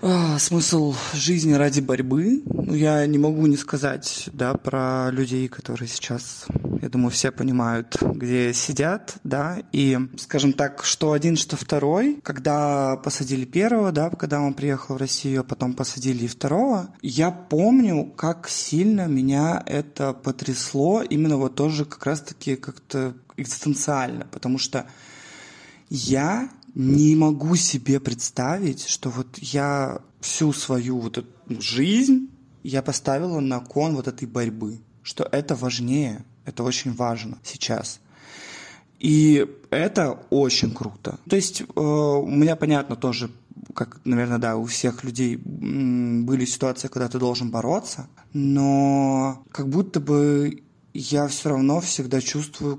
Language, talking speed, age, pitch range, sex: Russian, 135 wpm, 20-39, 130-150 Hz, male